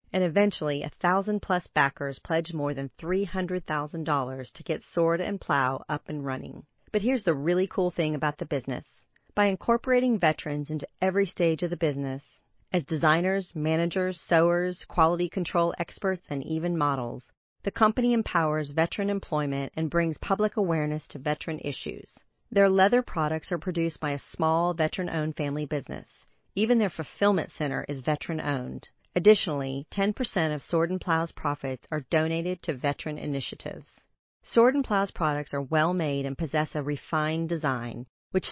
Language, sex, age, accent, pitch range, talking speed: English, female, 40-59, American, 145-185 Hz, 150 wpm